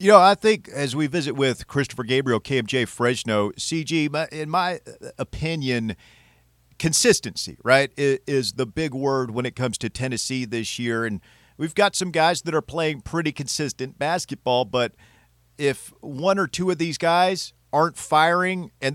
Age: 40-59